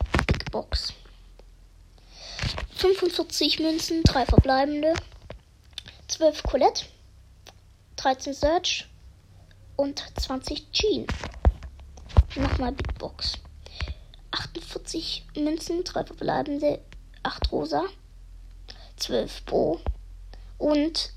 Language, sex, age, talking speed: German, female, 10-29, 65 wpm